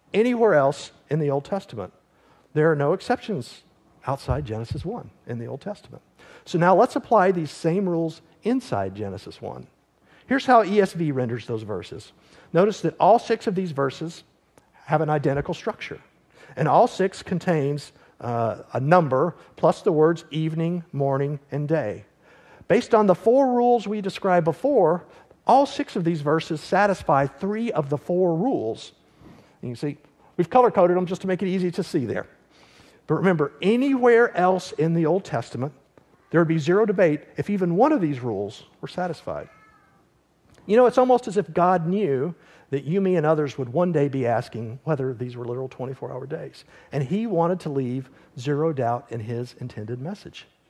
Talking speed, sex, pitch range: 175 wpm, male, 140-195 Hz